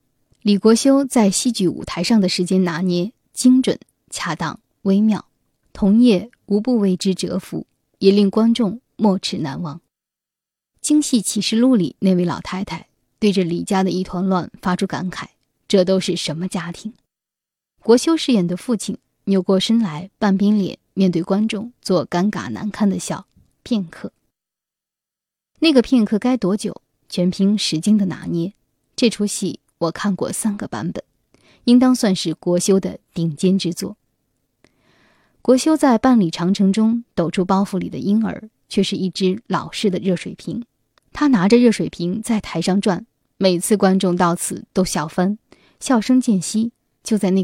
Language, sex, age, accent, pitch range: Chinese, female, 20-39, native, 180-220 Hz